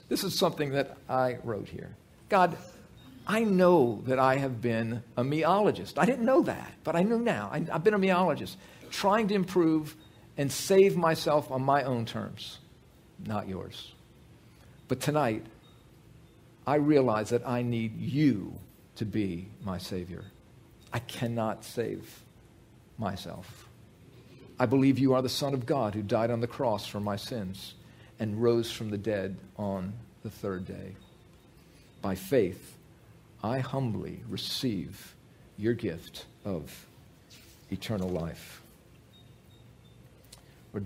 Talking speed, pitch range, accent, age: 135 wpm, 105-135 Hz, American, 50-69